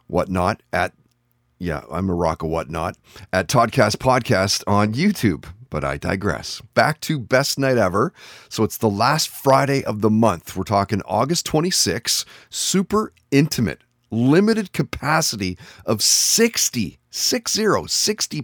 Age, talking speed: 30-49, 135 wpm